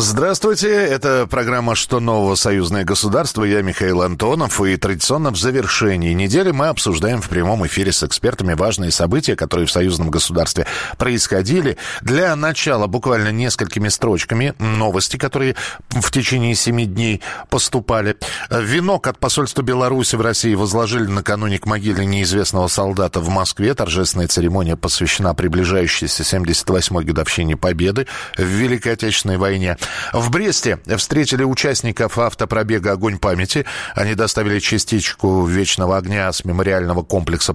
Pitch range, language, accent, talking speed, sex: 95-125 Hz, Russian, native, 130 wpm, male